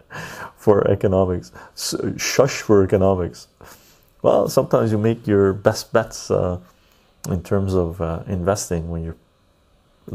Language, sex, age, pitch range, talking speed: English, male, 30-49, 90-110 Hz, 125 wpm